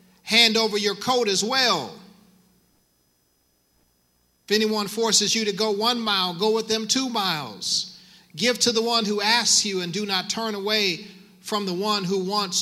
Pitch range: 160-200 Hz